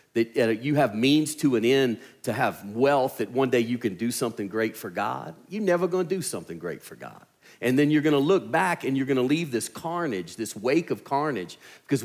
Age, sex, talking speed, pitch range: 40-59, male, 225 wpm, 120-160 Hz